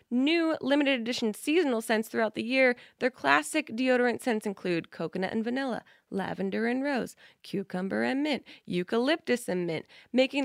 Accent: American